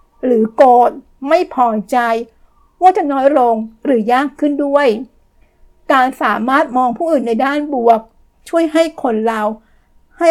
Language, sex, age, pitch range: Thai, female, 60-79, 235-280 Hz